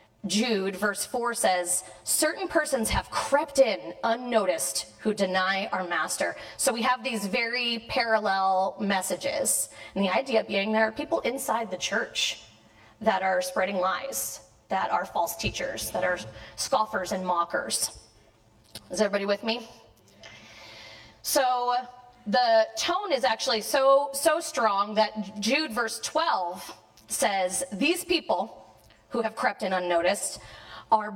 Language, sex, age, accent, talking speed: English, female, 30-49, American, 135 wpm